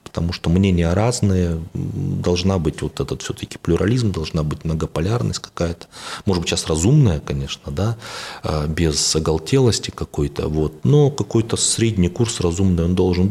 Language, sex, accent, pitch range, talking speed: Russian, male, native, 80-105 Hz, 140 wpm